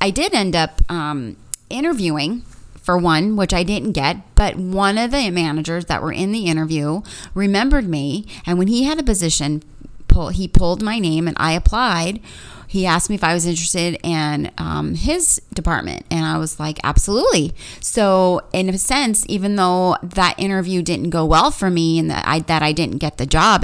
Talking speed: 195 wpm